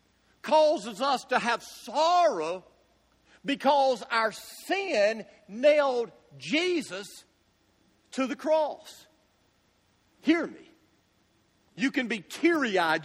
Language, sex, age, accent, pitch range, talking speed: English, male, 50-69, American, 185-260 Hz, 85 wpm